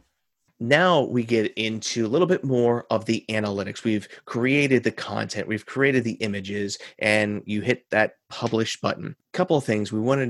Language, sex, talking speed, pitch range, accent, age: English, male, 175 wpm, 105-130 Hz, American, 30-49